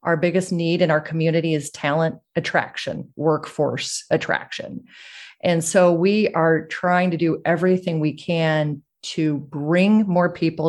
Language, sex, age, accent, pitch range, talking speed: English, female, 30-49, American, 155-185 Hz, 140 wpm